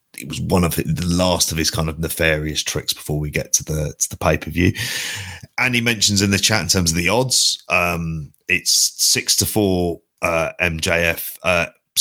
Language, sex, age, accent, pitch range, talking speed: English, male, 30-49, British, 80-95 Hz, 205 wpm